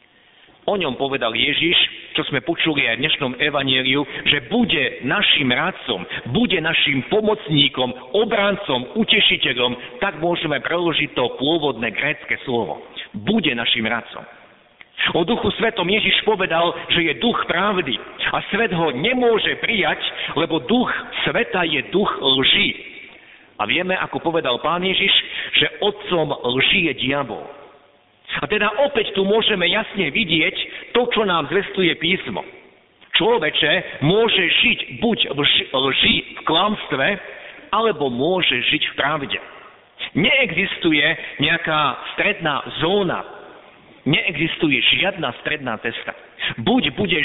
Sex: male